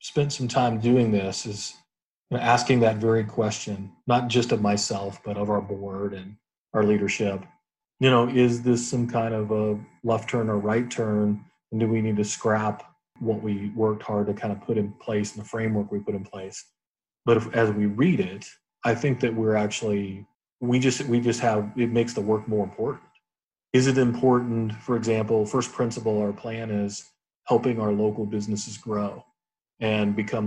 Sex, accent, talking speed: male, American, 185 wpm